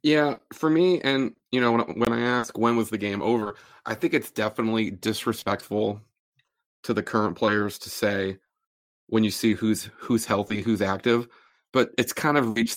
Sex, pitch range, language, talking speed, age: male, 105-125 Hz, English, 185 wpm, 30-49